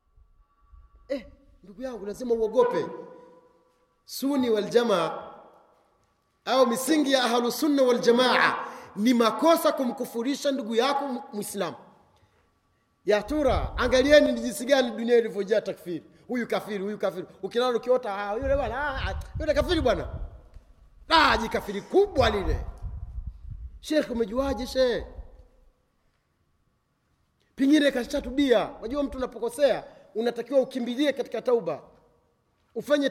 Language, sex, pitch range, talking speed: Swahili, male, 205-270 Hz, 60 wpm